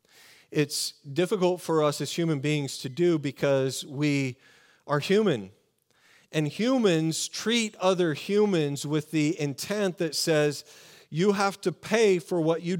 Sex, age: male, 40-59